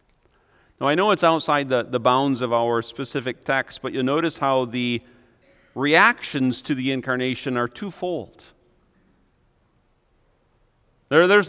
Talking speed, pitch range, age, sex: 130 wpm, 135-195 Hz, 40-59, male